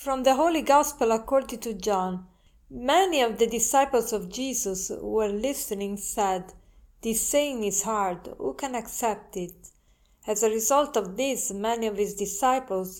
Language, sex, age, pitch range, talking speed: English, female, 40-59, 200-235 Hz, 155 wpm